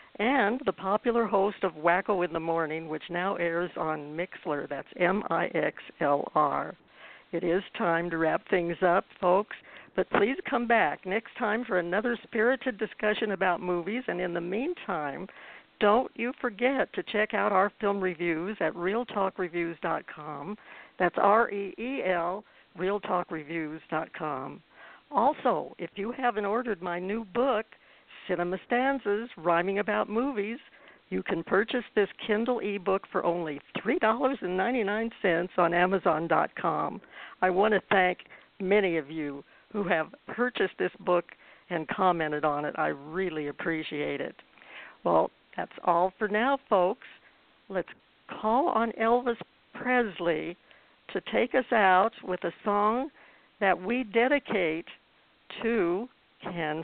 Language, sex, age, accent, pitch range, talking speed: English, female, 60-79, American, 175-225 Hz, 130 wpm